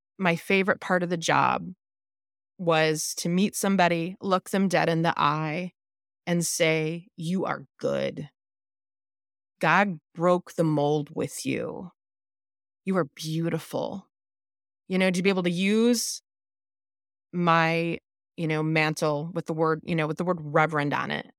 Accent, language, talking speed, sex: American, English, 145 wpm, female